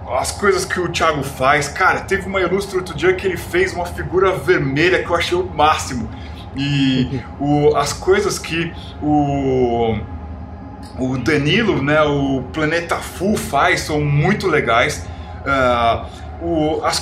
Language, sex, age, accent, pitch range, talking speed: Portuguese, male, 20-39, Brazilian, 135-180 Hz, 140 wpm